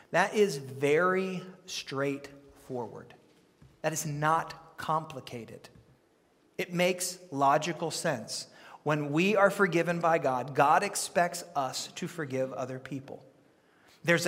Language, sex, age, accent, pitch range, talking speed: English, male, 40-59, American, 150-200 Hz, 110 wpm